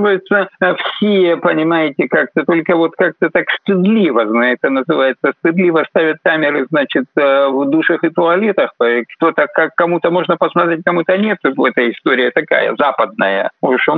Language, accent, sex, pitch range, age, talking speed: Russian, native, male, 165-205 Hz, 50-69, 140 wpm